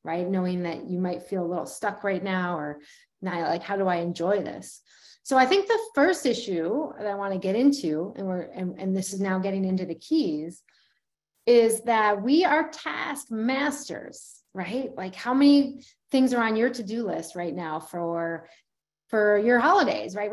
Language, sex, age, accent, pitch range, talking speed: English, female, 30-49, American, 195-275 Hz, 190 wpm